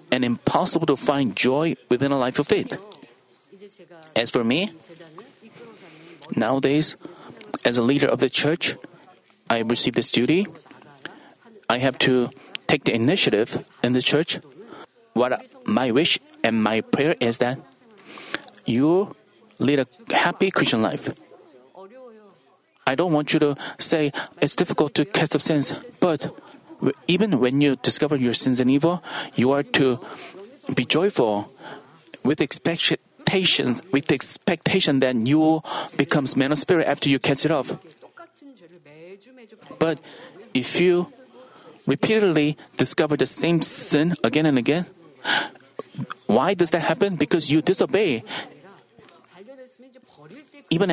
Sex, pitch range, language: male, 135-175 Hz, Korean